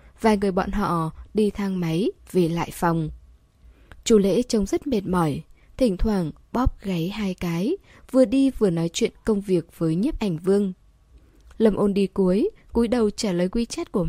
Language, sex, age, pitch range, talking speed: Vietnamese, female, 20-39, 170-230 Hz, 190 wpm